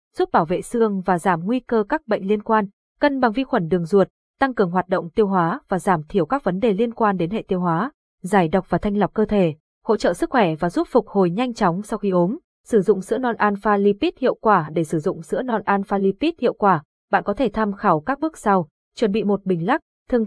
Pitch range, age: 185-240 Hz, 20-39